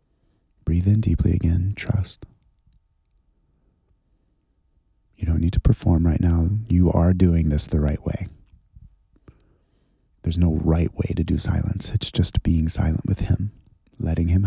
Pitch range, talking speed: 80-100 Hz, 140 wpm